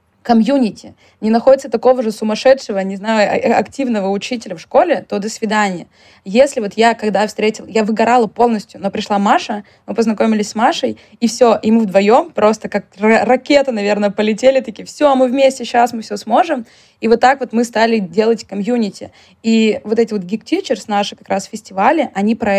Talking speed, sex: 180 wpm, female